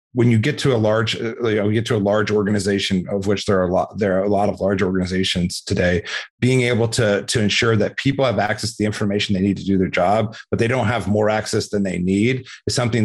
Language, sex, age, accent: English, male, 40-59, American